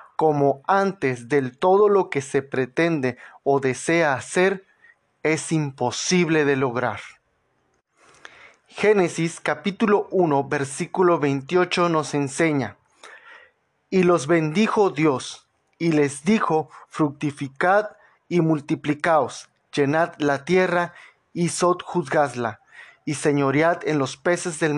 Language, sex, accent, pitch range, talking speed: Spanish, male, Mexican, 140-180 Hz, 105 wpm